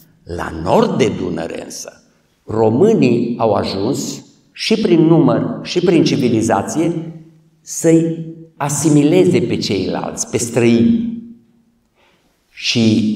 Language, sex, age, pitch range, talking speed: Romanian, male, 50-69, 120-160 Hz, 95 wpm